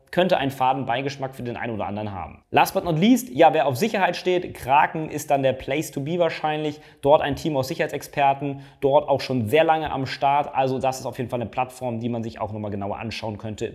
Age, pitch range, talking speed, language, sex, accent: 30-49, 125-165 Hz, 235 wpm, German, male, German